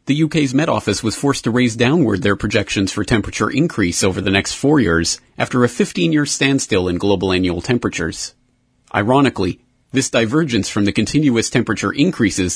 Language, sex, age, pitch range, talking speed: English, male, 30-49, 95-130 Hz, 165 wpm